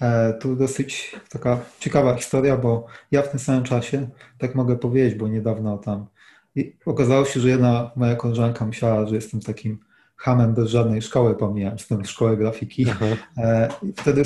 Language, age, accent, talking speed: Polish, 30-49, native, 165 wpm